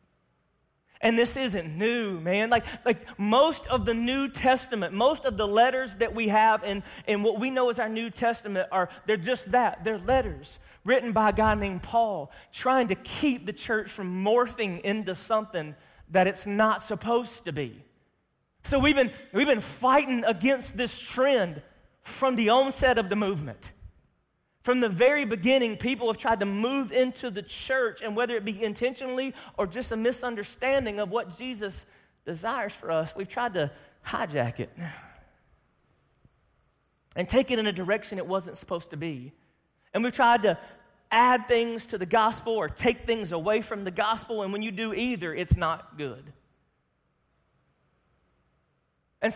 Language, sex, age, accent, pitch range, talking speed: English, male, 30-49, American, 195-250 Hz, 170 wpm